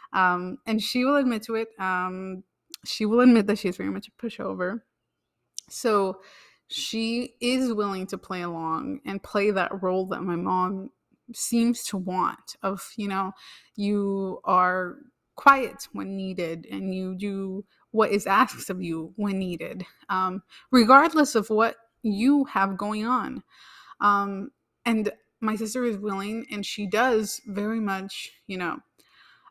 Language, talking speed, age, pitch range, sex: English, 150 wpm, 20-39, 190-240 Hz, female